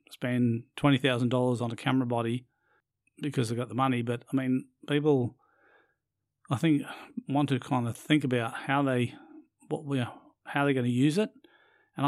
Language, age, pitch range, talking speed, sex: English, 40-59, 125-145 Hz, 180 wpm, male